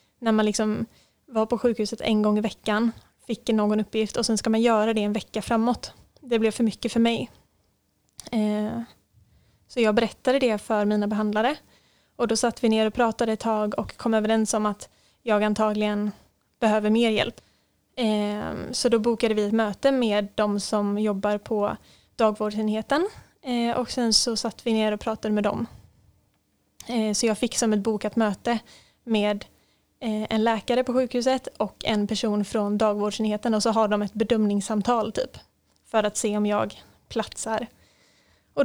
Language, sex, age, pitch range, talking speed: Swedish, female, 20-39, 210-235 Hz, 165 wpm